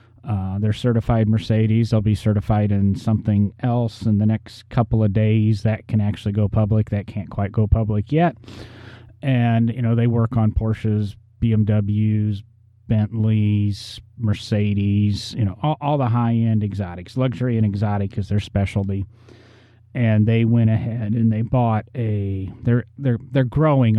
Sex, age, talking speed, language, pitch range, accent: male, 30-49, 160 wpm, English, 105-120 Hz, American